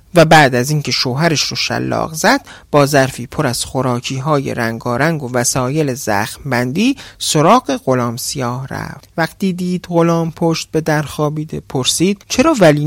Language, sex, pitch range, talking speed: Persian, male, 130-185 Hz, 145 wpm